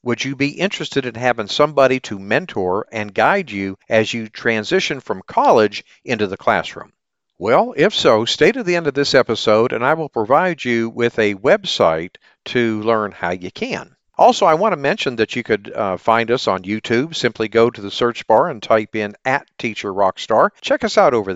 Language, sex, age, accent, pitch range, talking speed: English, male, 50-69, American, 110-140 Hz, 200 wpm